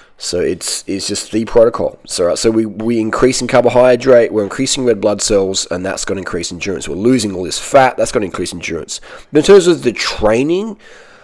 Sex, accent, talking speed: male, Australian, 205 wpm